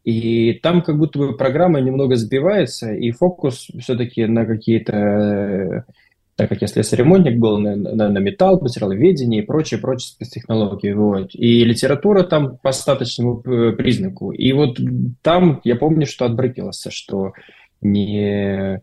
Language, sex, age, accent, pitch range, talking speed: Russian, male, 20-39, native, 110-140 Hz, 140 wpm